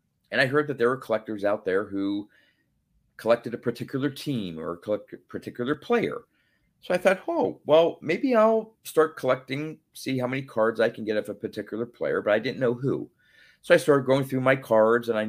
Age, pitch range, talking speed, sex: 40-59, 105-125 Hz, 205 wpm, male